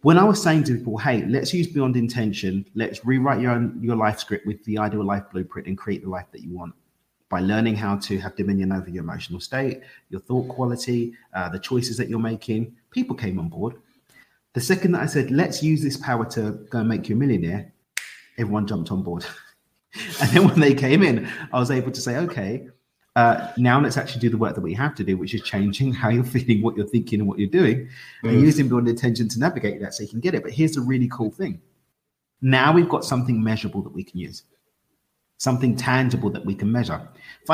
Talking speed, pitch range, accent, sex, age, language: 230 wpm, 105-135 Hz, British, male, 30-49, English